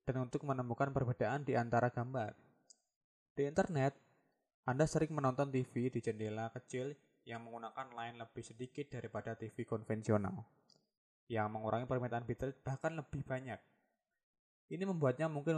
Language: Indonesian